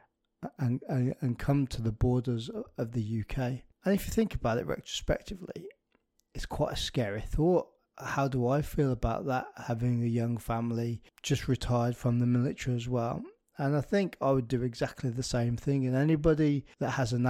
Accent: British